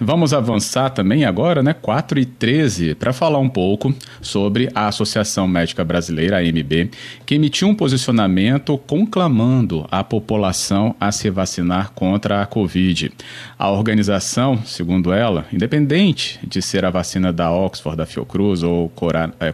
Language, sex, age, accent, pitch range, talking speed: Portuguese, male, 40-59, Brazilian, 90-125 Hz, 145 wpm